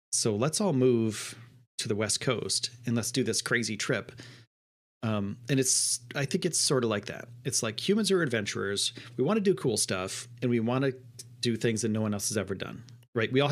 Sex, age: male, 30-49